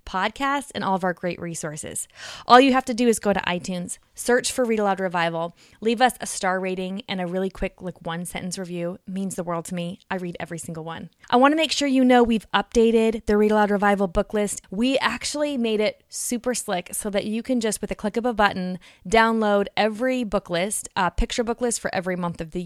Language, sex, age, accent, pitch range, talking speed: English, female, 20-39, American, 180-235 Hz, 235 wpm